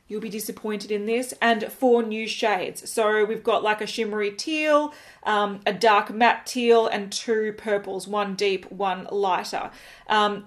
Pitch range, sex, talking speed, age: 210-245 Hz, female, 165 wpm, 30-49